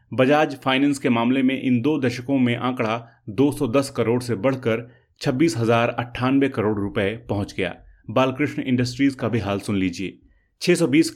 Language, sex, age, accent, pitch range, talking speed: Hindi, male, 30-49, native, 105-135 Hz, 145 wpm